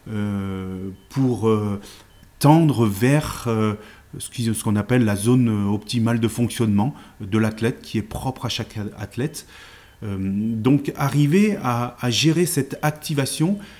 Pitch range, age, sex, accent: 110-135 Hz, 30-49, male, French